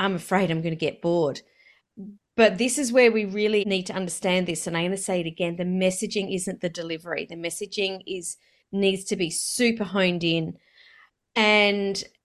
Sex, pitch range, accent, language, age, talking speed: female, 180-225 Hz, Australian, English, 30-49, 180 wpm